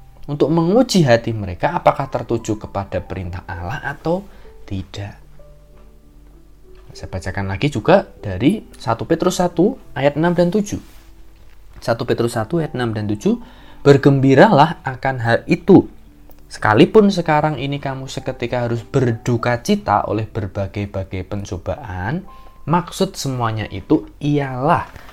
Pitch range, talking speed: 100-150 Hz, 115 wpm